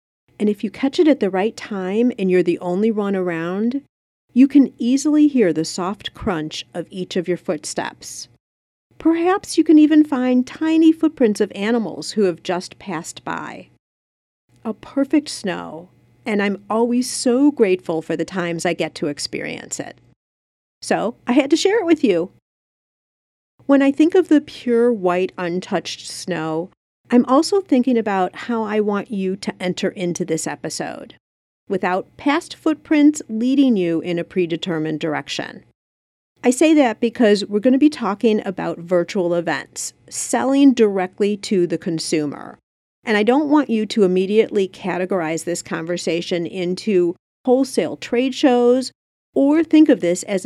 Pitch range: 175-255 Hz